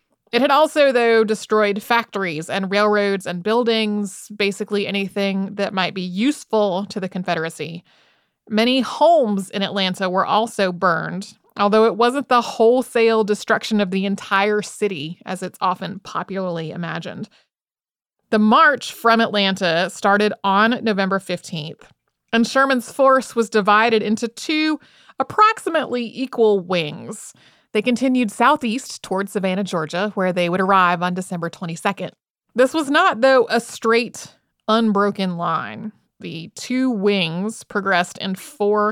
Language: English